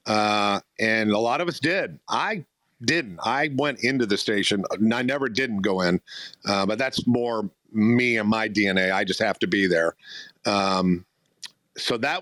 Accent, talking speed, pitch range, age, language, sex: American, 180 wpm, 110-145 Hz, 50-69, English, male